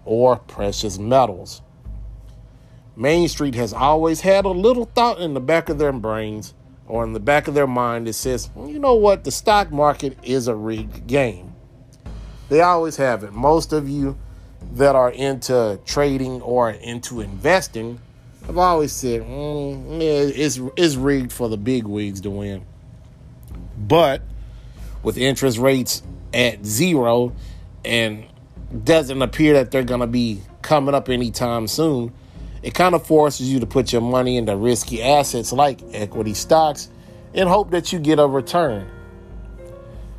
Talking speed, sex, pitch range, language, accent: 155 wpm, male, 110-145 Hz, English, American